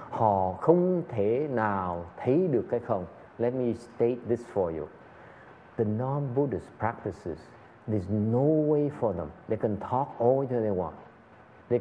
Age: 50-69